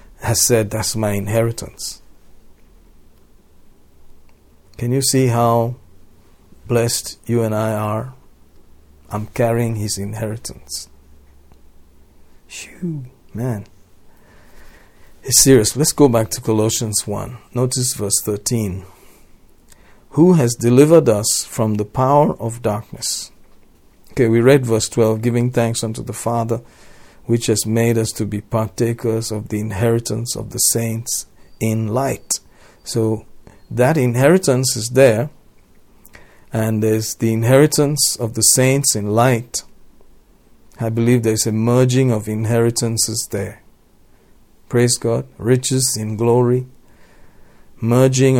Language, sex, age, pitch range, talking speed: English, male, 50-69, 105-125 Hz, 115 wpm